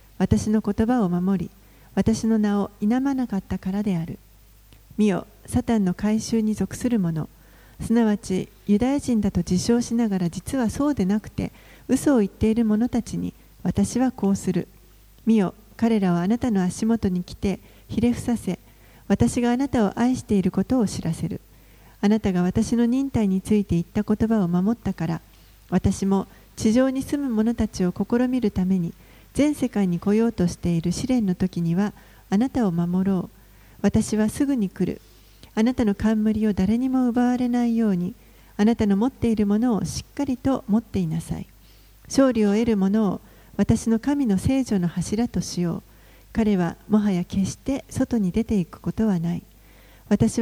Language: Japanese